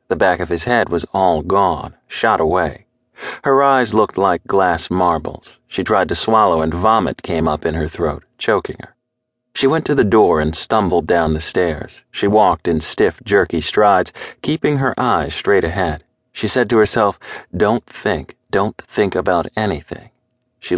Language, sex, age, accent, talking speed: English, male, 40-59, American, 175 wpm